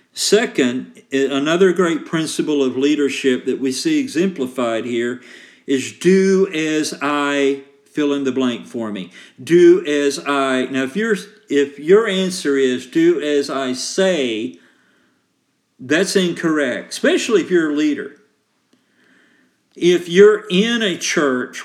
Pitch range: 135-185 Hz